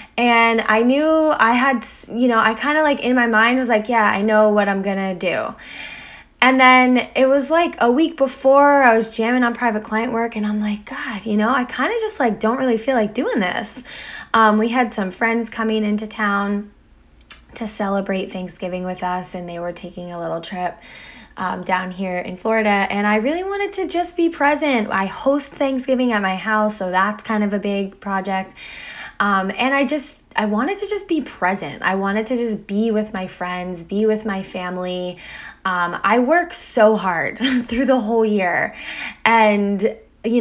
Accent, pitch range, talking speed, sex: American, 195-245 Hz, 200 wpm, female